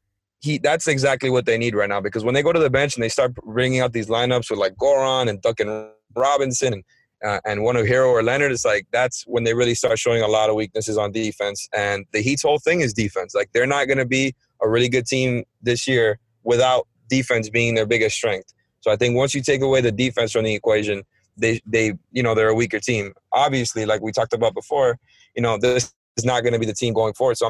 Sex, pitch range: male, 110-130 Hz